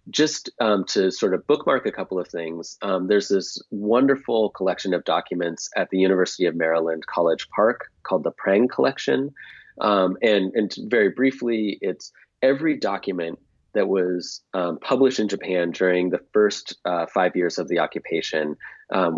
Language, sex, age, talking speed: English, male, 30-49, 165 wpm